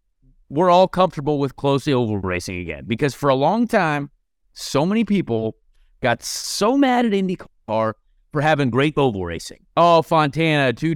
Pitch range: 140-185 Hz